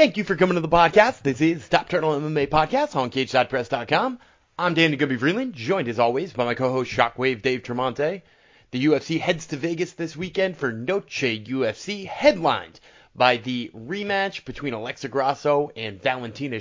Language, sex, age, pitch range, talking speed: English, male, 30-49, 125-175 Hz, 170 wpm